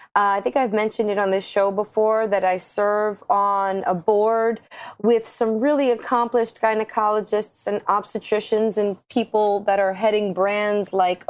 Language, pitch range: English, 205-250 Hz